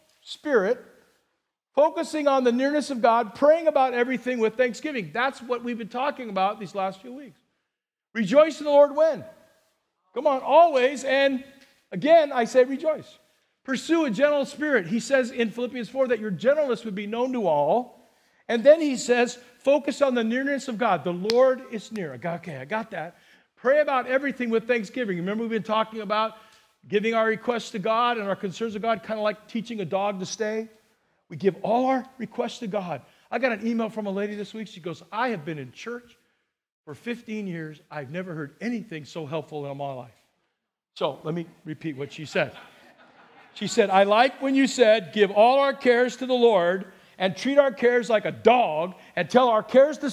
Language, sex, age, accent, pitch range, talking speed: English, male, 50-69, American, 205-265 Hz, 200 wpm